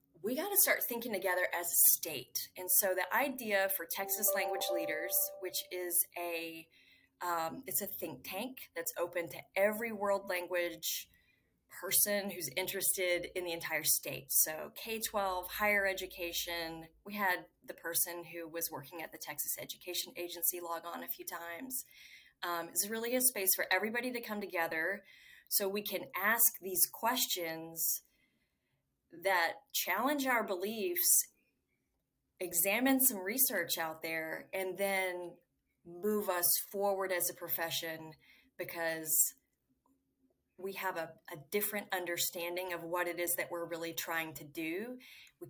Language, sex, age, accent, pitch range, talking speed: English, female, 20-39, American, 170-205 Hz, 145 wpm